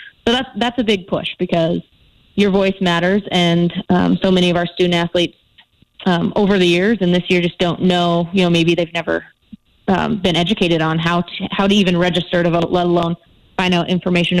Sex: female